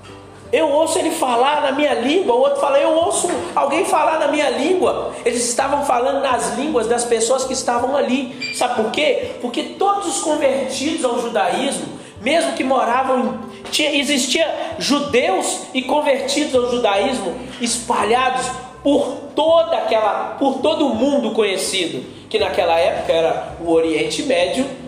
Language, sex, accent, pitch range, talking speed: Portuguese, male, Brazilian, 200-275 Hz, 145 wpm